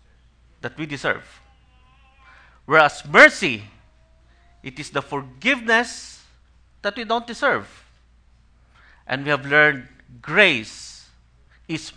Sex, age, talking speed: male, 50-69, 95 wpm